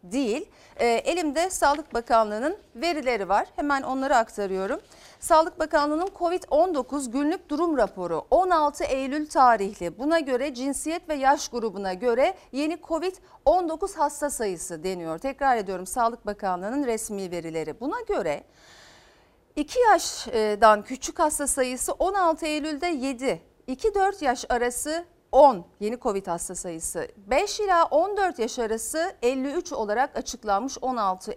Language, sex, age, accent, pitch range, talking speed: Turkish, female, 50-69, native, 220-320 Hz, 120 wpm